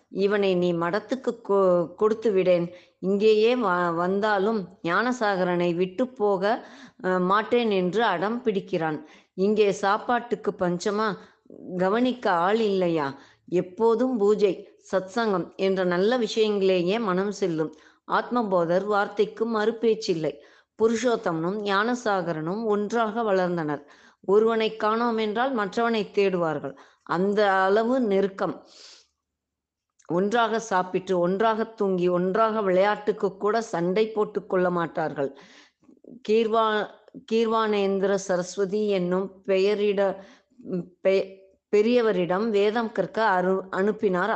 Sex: female